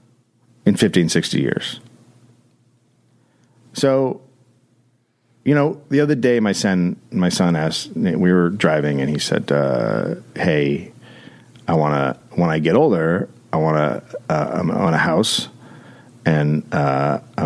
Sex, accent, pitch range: male, American, 95-130 Hz